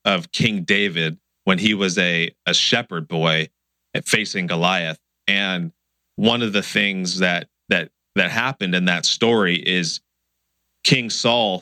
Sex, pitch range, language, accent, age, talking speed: male, 85-105 Hz, English, American, 30-49, 145 wpm